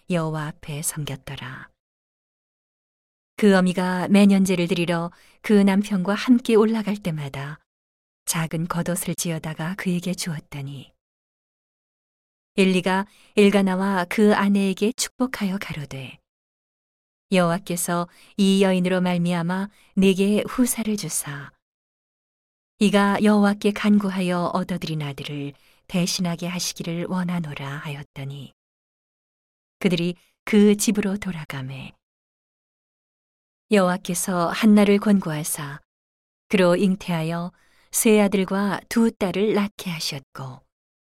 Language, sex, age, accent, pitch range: Korean, female, 40-59, native, 160-200 Hz